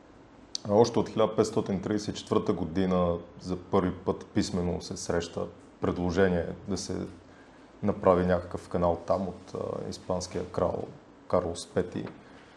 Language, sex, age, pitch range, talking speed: Bulgarian, male, 30-49, 90-100 Hz, 110 wpm